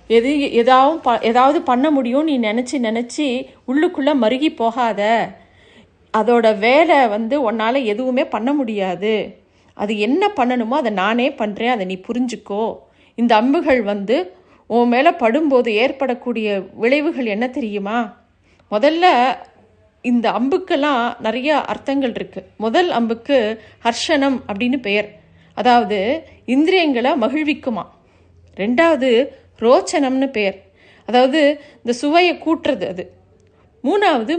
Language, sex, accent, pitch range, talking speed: Tamil, female, native, 225-290 Hz, 105 wpm